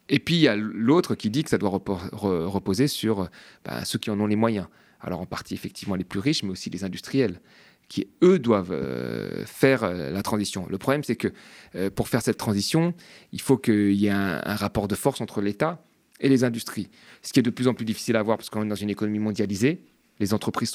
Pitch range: 95-120 Hz